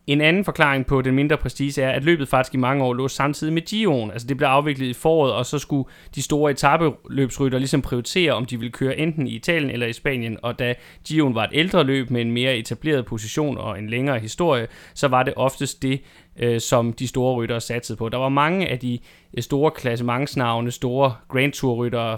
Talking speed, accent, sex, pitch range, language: 215 wpm, native, male, 120-140 Hz, Danish